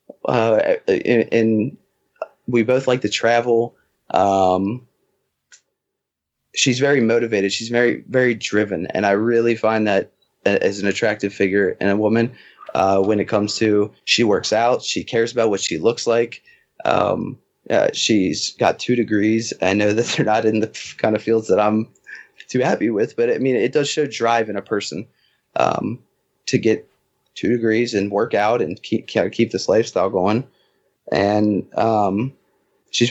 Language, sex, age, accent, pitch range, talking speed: English, male, 20-39, American, 105-120 Hz, 165 wpm